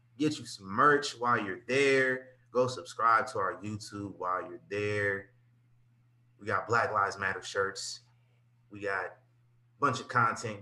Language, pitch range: English, 110-130 Hz